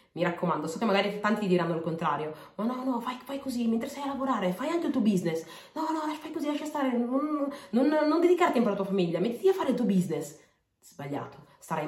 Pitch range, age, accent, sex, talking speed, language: 165-215 Hz, 30-49, native, female, 245 wpm, Italian